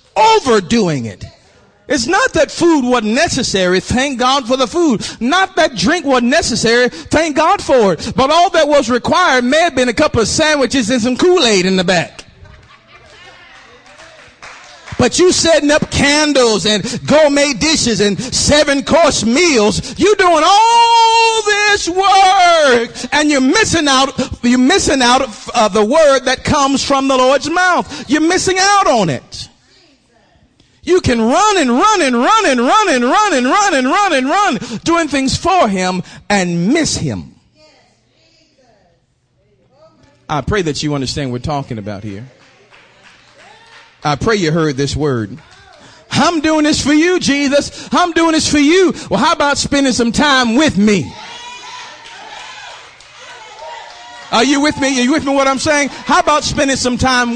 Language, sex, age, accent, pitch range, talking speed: English, male, 40-59, American, 230-335 Hz, 165 wpm